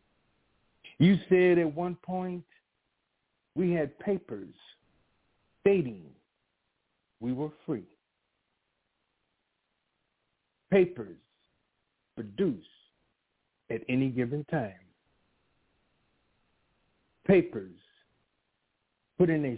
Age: 60-79